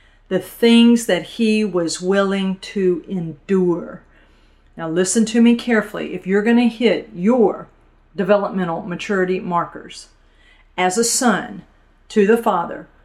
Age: 50-69